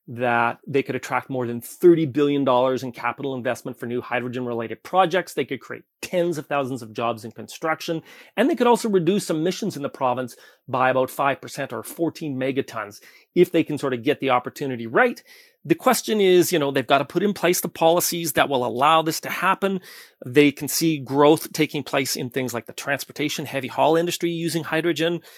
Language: English